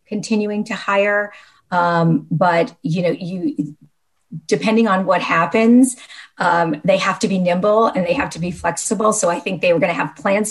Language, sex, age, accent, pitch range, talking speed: English, female, 40-59, American, 165-225 Hz, 190 wpm